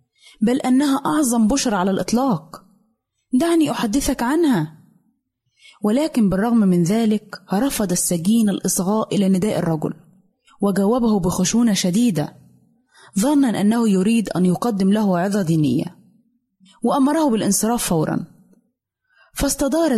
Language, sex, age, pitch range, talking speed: Arabic, female, 20-39, 190-250 Hz, 100 wpm